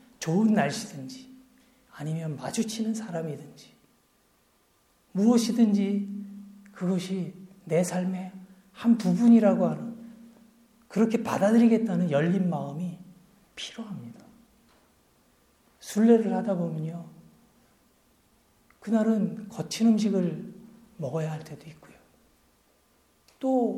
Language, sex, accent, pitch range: Korean, male, native, 185-230 Hz